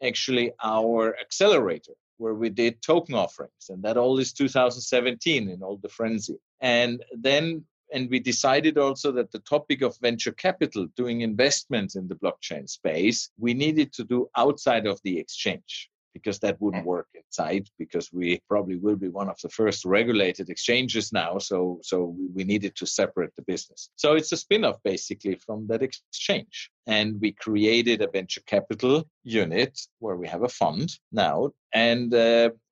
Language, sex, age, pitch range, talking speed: English, male, 50-69, 105-130 Hz, 170 wpm